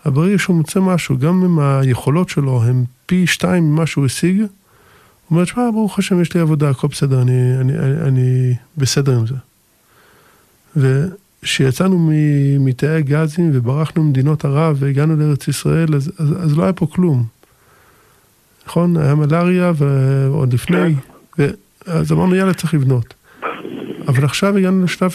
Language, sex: Hebrew, male